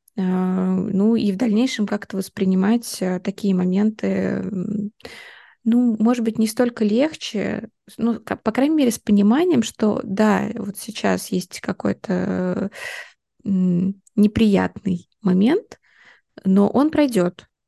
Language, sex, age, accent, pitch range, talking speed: Russian, female, 20-39, native, 195-225 Hz, 105 wpm